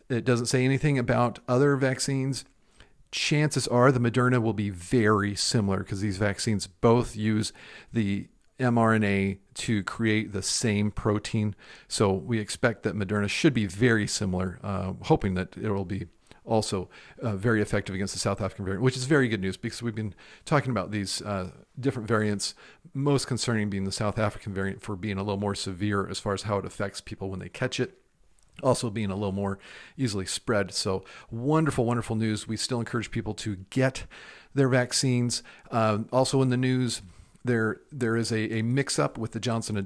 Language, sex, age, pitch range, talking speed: English, male, 40-59, 100-125 Hz, 185 wpm